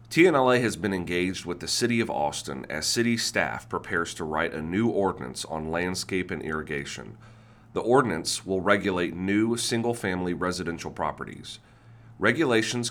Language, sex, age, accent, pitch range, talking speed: English, male, 40-59, American, 90-115 Hz, 145 wpm